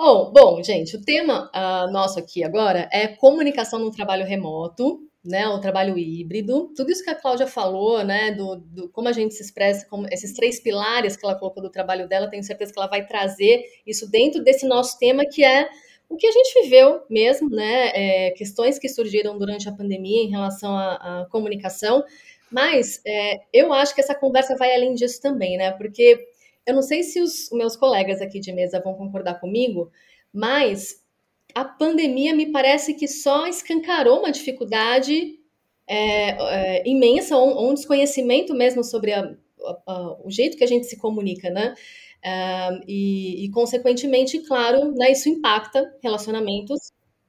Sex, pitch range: female, 200-270 Hz